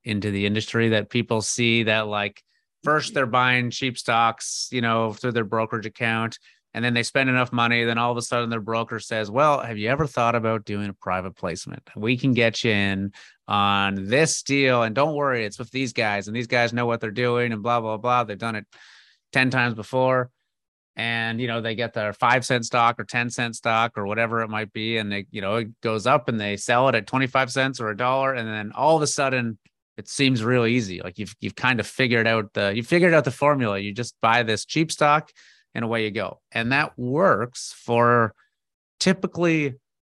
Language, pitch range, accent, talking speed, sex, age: English, 110-125 Hz, American, 220 wpm, male, 30-49